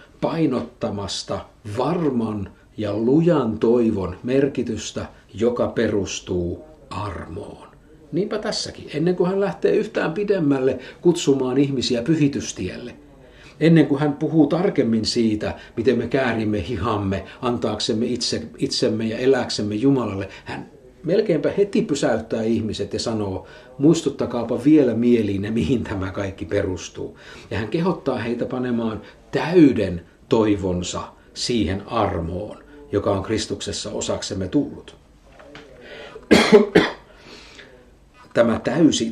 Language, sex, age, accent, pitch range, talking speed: Finnish, male, 60-79, native, 100-140 Hz, 100 wpm